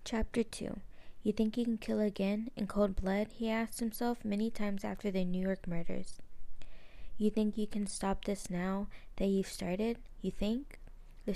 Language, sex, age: English, female, 20-39